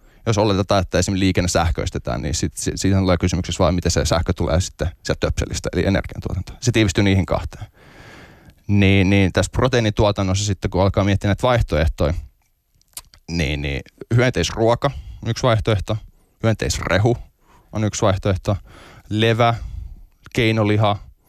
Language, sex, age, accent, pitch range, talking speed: Finnish, male, 20-39, native, 90-110 Hz, 140 wpm